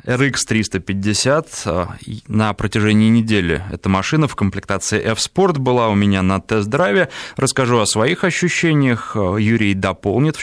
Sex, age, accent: male, 20-39, native